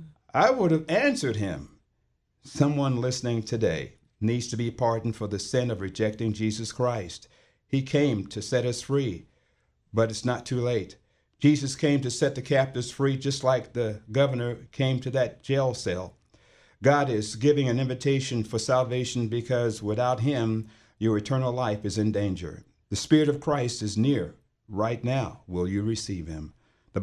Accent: American